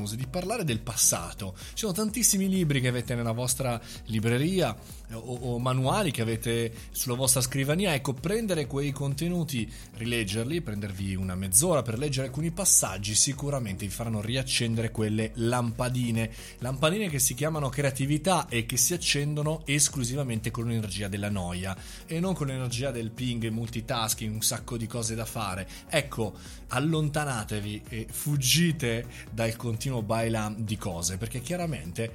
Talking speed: 145 wpm